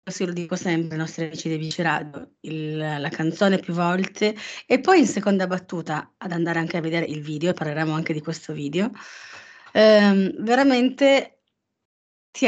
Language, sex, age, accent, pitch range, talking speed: Italian, female, 30-49, native, 160-205 Hz, 160 wpm